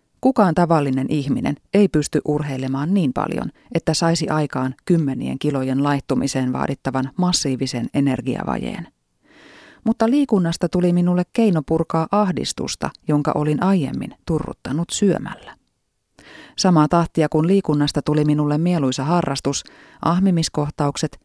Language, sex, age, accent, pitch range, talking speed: Finnish, female, 30-49, native, 140-185 Hz, 105 wpm